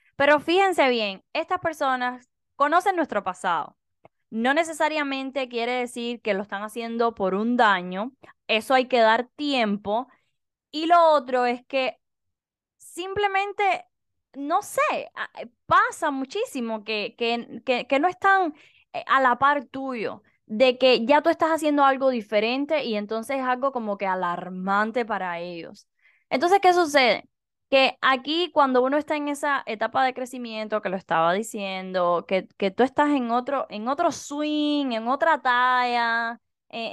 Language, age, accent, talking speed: Spanish, 10-29, American, 145 wpm